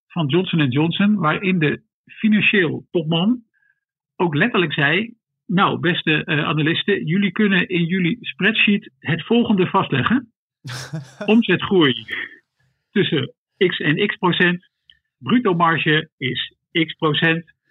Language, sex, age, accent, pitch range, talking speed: Dutch, male, 50-69, Dutch, 145-195 Hz, 110 wpm